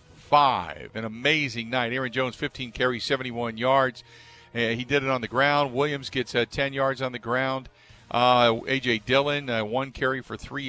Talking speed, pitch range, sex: 185 wpm, 115-140 Hz, male